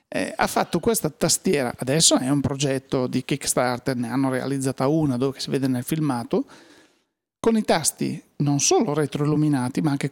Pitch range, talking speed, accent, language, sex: 135-160 Hz, 165 wpm, native, Italian, male